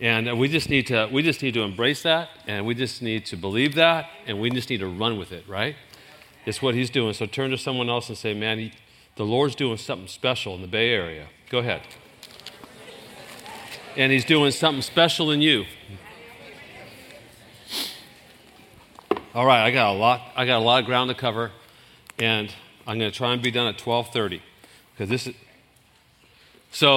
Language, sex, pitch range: English, male, 110-140 Hz